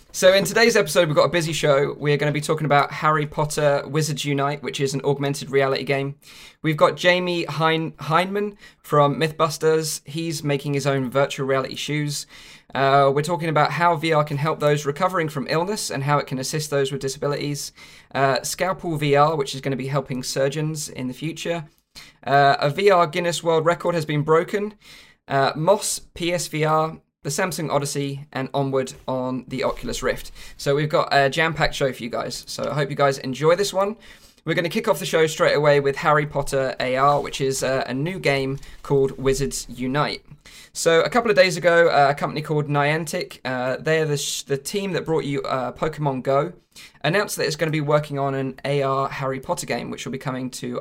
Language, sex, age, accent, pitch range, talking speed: English, male, 20-39, British, 140-160 Hz, 195 wpm